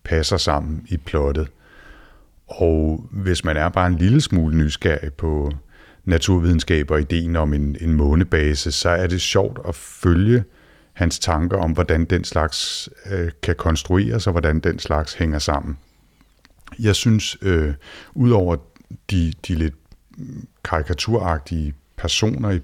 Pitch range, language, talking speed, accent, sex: 80-95 Hz, Danish, 135 wpm, native, male